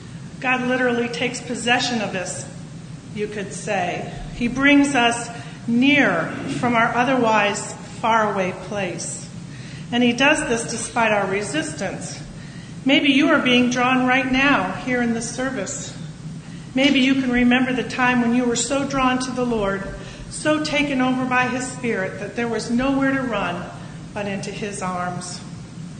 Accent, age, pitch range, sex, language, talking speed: American, 40-59, 170-255 Hz, female, English, 150 wpm